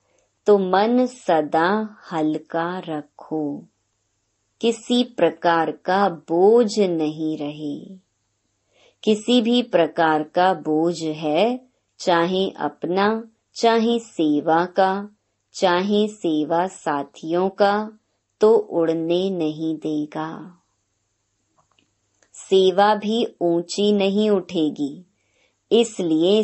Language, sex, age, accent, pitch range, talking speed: Hindi, male, 30-49, native, 155-205 Hz, 80 wpm